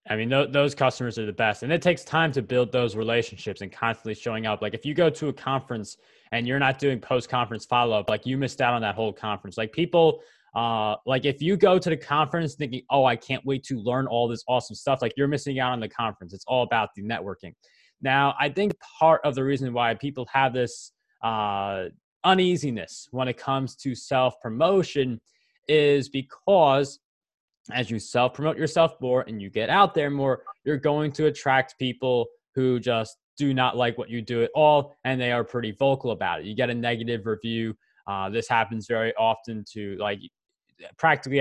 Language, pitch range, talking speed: English, 115-140 Hz, 205 wpm